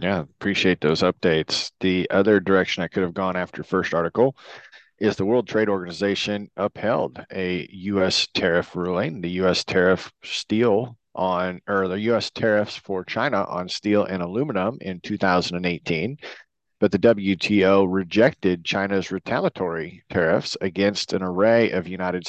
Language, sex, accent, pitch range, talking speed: English, male, American, 95-105 Hz, 145 wpm